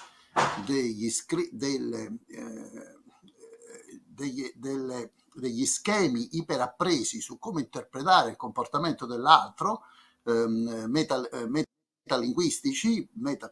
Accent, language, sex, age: native, Italian, male, 60-79